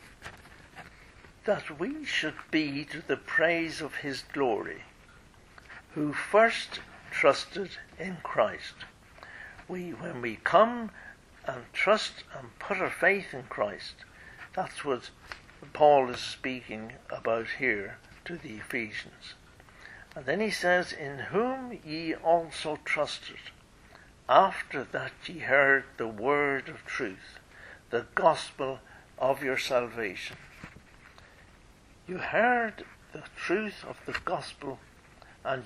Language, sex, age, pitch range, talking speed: English, male, 60-79, 125-170 Hz, 115 wpm